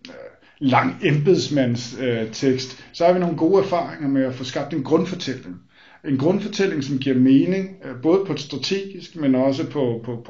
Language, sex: Danish, male